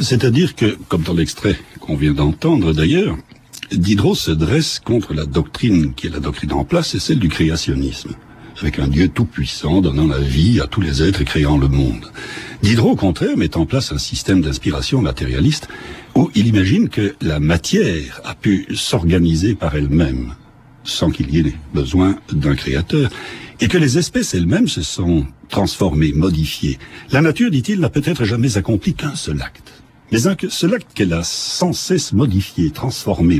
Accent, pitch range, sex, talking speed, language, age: French, 75-120 Hz, male, 170 wpm, French, 60-79